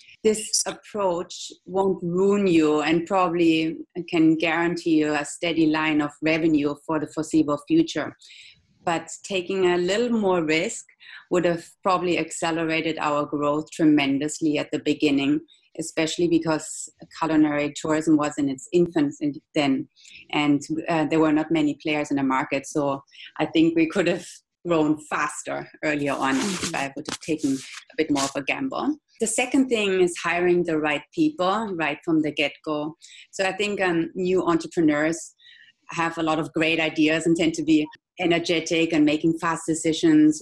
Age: 30-49